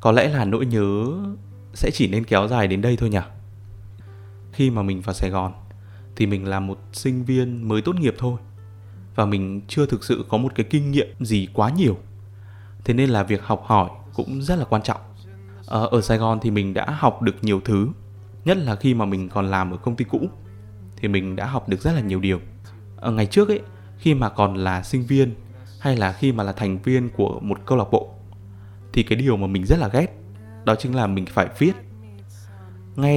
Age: 20-39